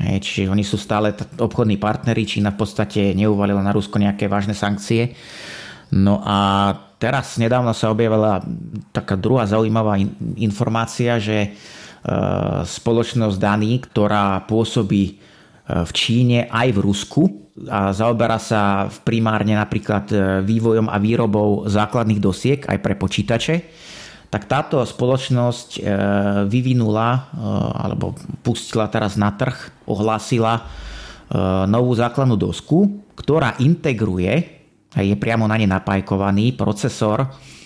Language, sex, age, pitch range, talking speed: Slovak, male, 30-49, 105-125 Hz, 115 wpm